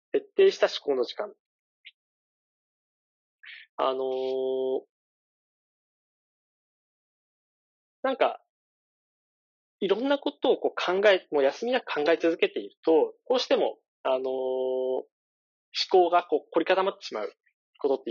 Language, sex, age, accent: Japanese, male, 40-59, native